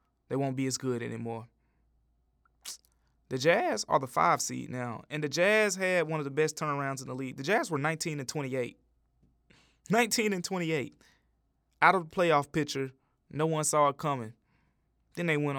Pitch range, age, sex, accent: 125-155 Hz, 20-39, male, American